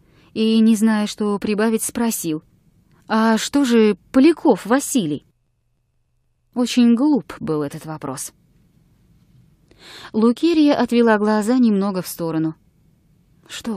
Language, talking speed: English, 100 wpm